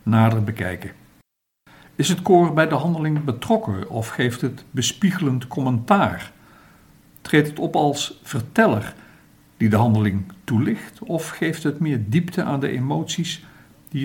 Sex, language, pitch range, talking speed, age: male, Dutch, 115-160 Hz, 135 wpm, 60-79